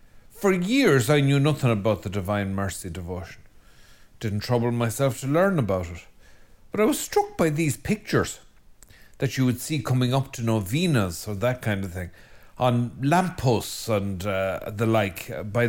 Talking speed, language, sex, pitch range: 170 wpm, English, male, 105-140 Hz